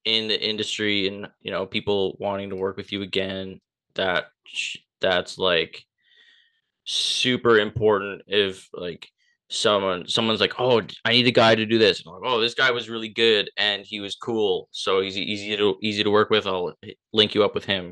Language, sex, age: English, male, 20-39